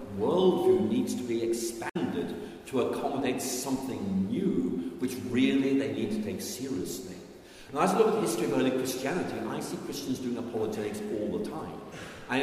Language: Danish